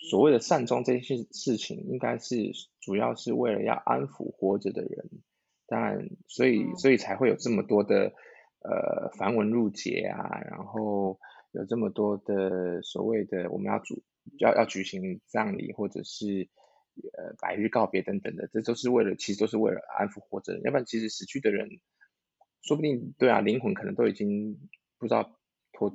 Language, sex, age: Chinese, male, 20-39